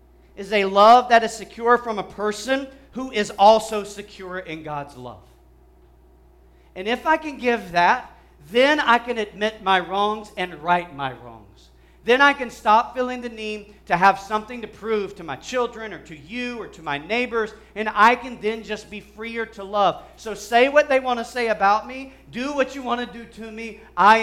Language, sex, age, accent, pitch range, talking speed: English, male, 40-59, American, 145-220 Hz, 200 wpm